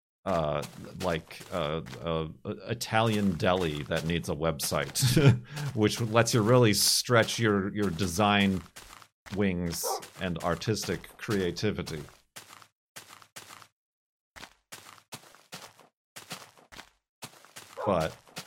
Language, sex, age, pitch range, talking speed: English, male, 40-59, 85-115 Hz, 75 wpm